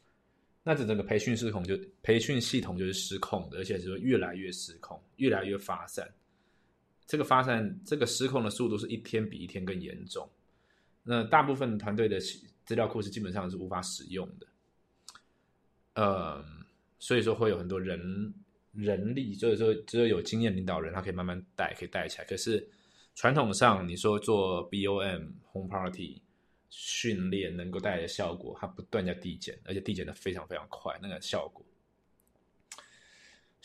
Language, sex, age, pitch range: Chinese, male, 20-39, 95-115 Hz